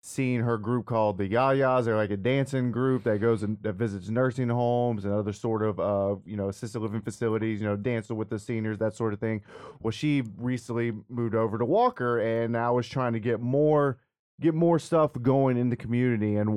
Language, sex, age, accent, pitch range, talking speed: English, male, 30-49, American, 105-125 Hz, 215 wpm